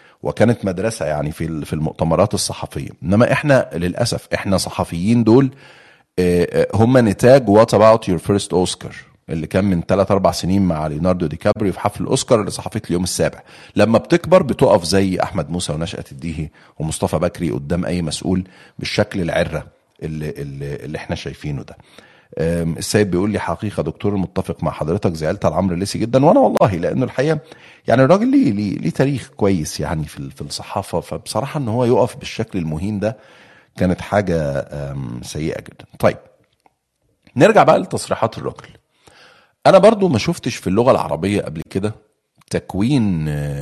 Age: 40-59